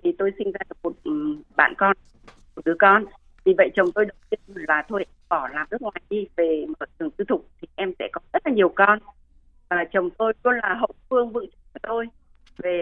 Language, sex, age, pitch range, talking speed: Vietnamese, female, 20-39, 175-255 Hz, 220 wpm